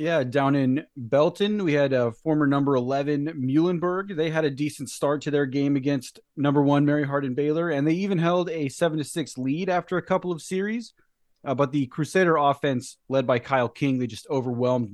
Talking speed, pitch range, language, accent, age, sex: 205 wpm, 125-150 Hz, English, American, 30-49, male